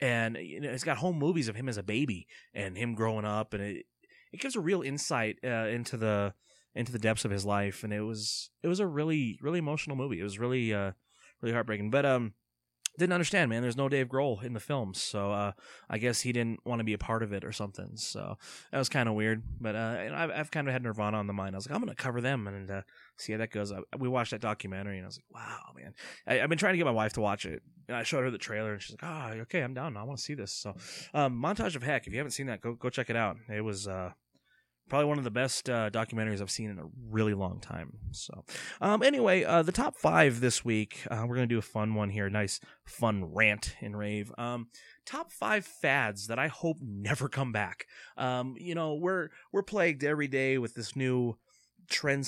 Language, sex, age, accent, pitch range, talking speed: English, male, 20-39, American, 105-140 Hz, 260 wpm